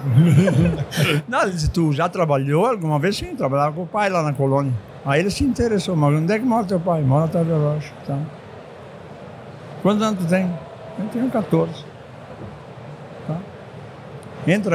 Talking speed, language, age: 165 wpm, Portuguese, 60-79